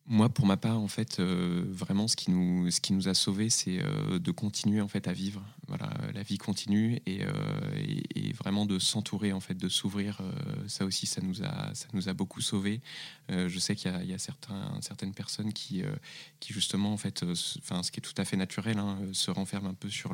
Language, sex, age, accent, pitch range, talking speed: French, male, 20-39, French, 100-155 Hz, 245 wpm